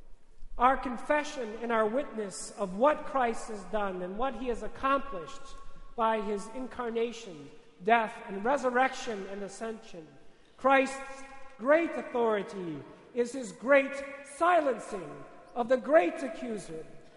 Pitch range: 215-285 Hz